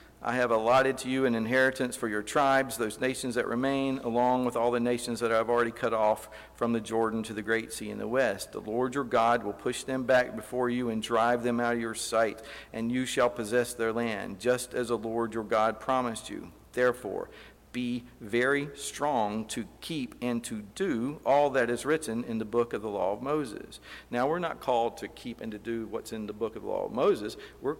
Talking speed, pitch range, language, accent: 225 wpm, 110-130 Hz, English, American